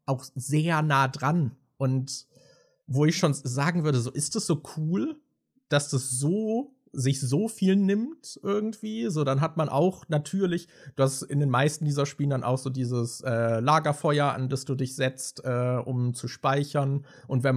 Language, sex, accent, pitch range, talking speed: German, male, German, 130-155 Hz, 180 wpm